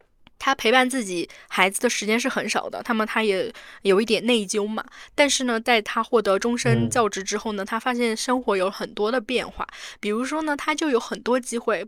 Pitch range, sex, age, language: 195-245 Hz, female, 10-29, Chinese